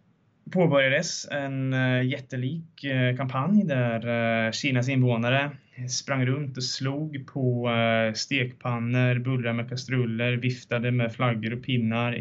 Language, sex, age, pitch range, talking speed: Swedish, male, 20-39, 115-135 Hz, 105 wpm